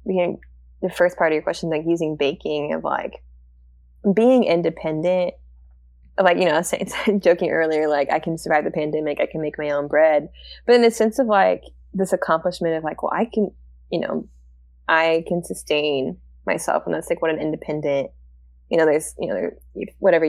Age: 20-39